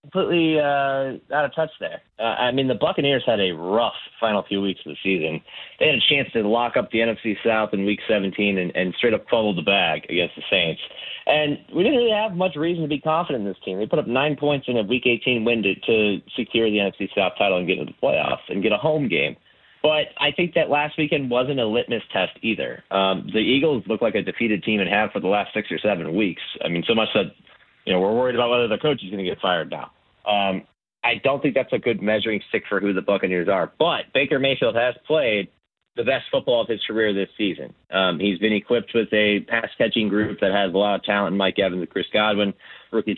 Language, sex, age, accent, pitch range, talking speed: English, male, 30-49, American, 100-125 Hz, 245 wpm